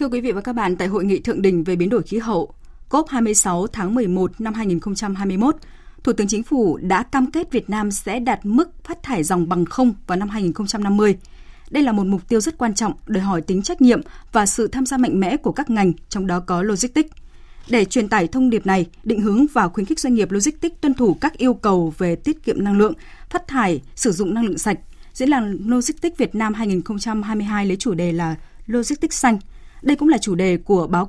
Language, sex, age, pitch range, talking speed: Vietnamese, female, 20-39, 185-250 Hz, 225 wpm